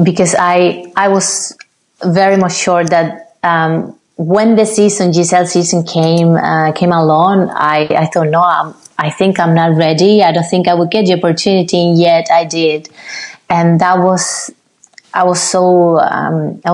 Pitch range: 165-185 Hz